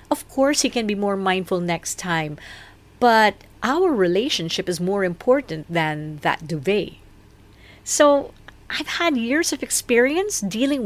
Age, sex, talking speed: 50-69, female, 140 wpm